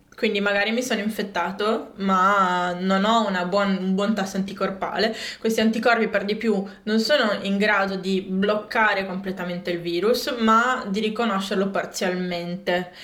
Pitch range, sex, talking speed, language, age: 190-225 Hz, female, 140 wpm, Italian, 20-39